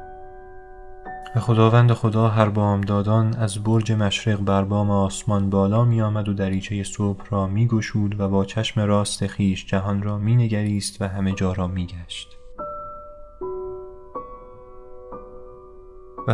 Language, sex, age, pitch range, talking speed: Persian, male, 20-39, 95-115 Hz, 130 wpm